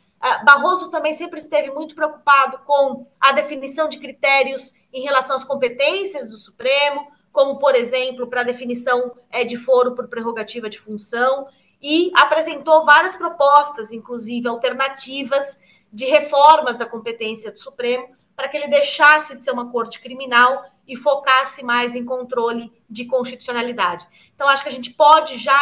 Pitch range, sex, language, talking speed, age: 240-280 Hz, female, Portuguese, 150 wpm, 20-39